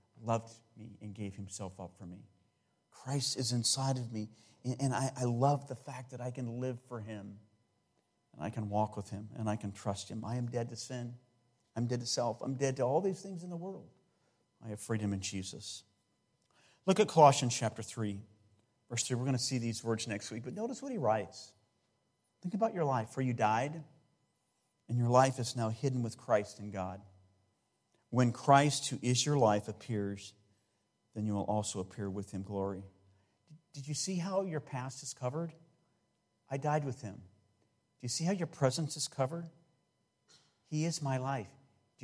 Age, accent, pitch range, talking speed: 40-59, American, 105-145 Hz, 195 wpm